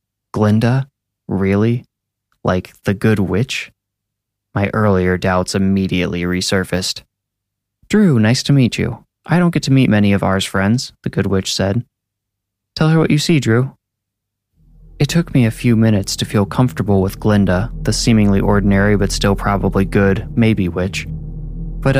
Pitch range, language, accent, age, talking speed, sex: 95-130 Hz, English, American, 20-39, 155 wpm, male